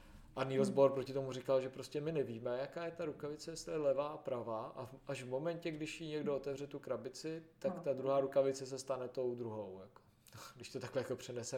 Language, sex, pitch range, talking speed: Czech, male, 125-140 Hz, 220 wpm